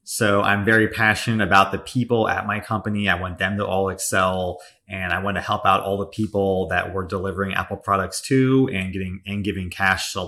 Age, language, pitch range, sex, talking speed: 30-49, English, 95-110 Hz, male, 220 wpm